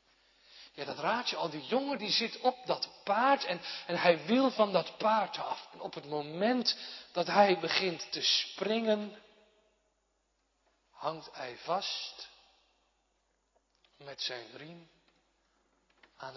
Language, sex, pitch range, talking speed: Dutch, male, 145-210 Hz, 130 wpm